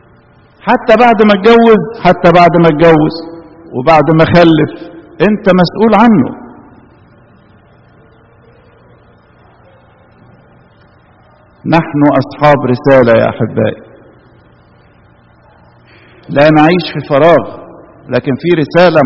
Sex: male